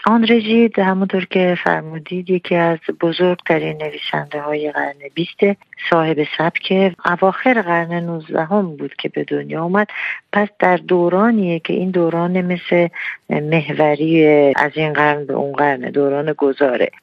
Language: Persian